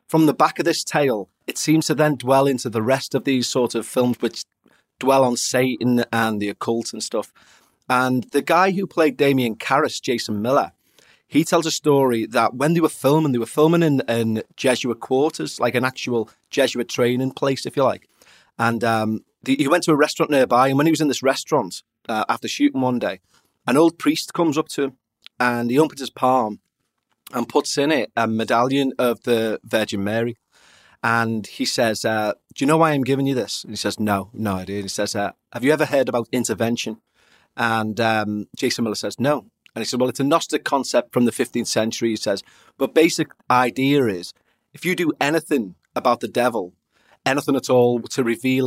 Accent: British